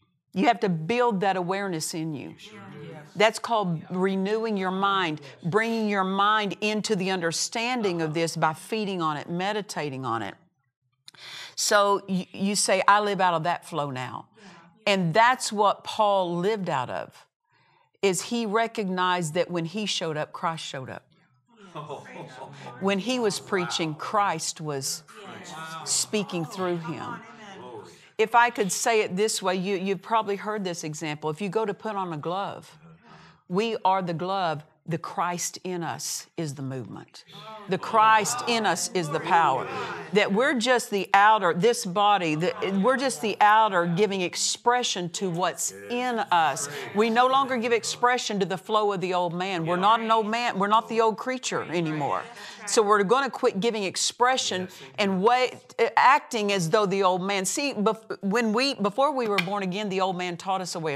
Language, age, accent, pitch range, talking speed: English, 50-69, American, 170-220 Hz, 170 wpm